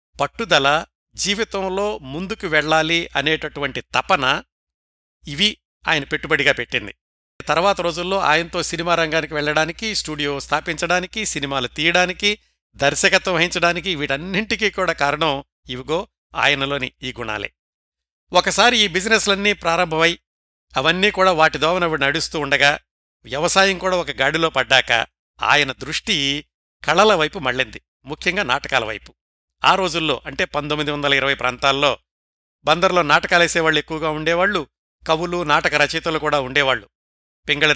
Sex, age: male, 60-79